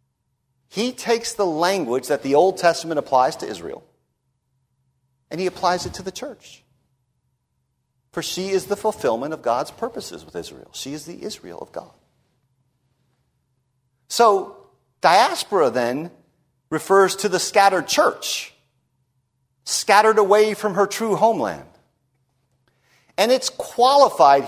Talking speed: 125 wpm